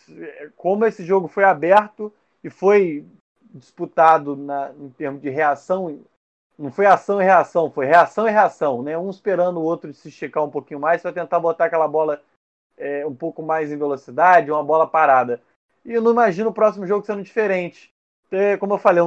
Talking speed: 190 wpm